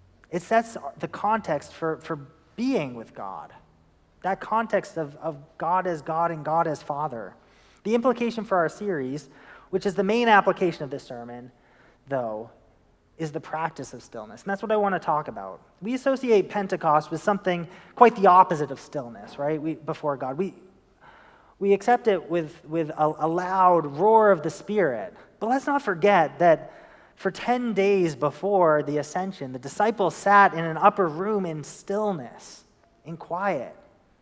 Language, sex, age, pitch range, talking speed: English, male, 30-49, 155-210 Hz, 165 wpm